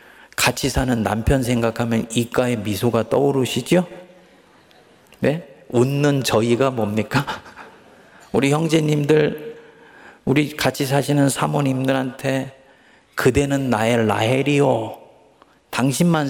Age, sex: 40-59, male